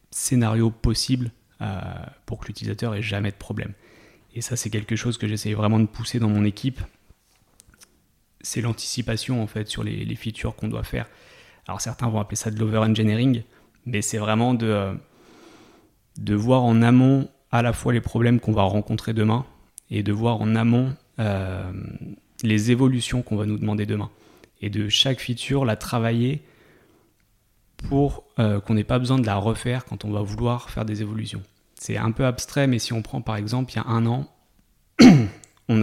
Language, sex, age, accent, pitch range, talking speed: French, male, 30-49, French, 105-120 Hz, 185 wpm